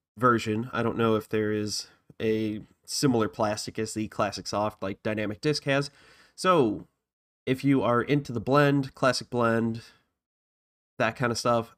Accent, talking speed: American, 160 wpm